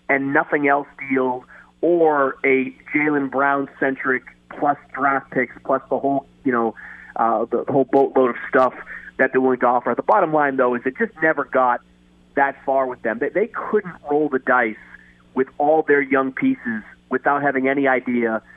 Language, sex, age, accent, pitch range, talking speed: English, male, 40-59, American, 120-140 Hz, 180 wpm